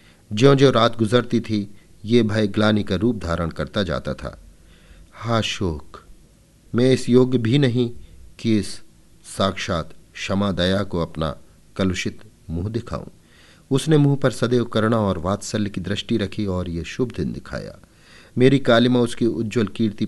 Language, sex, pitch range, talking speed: Hindi, male, 90-120 Hz, 150 wpm